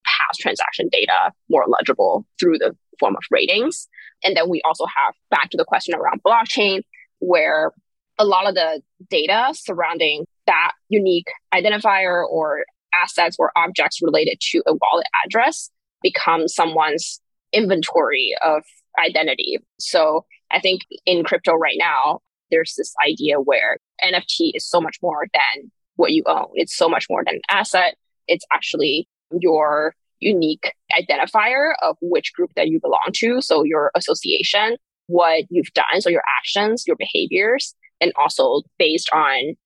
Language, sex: English, female